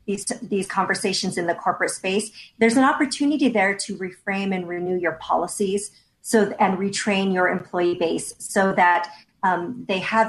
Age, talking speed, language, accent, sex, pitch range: 40-59, 165 wpm, English, American, female, 175-210 Hz